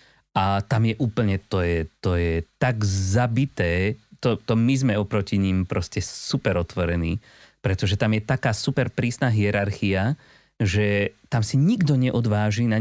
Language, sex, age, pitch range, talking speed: Slovak, male, 30-49, 100-130 Hz, 150 wpm